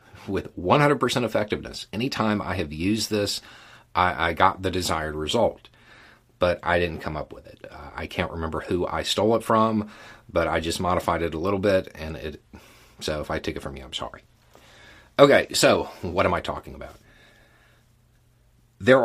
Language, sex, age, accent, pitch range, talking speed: English, male, 40-59, American, 90-115 Hz, 180 wpm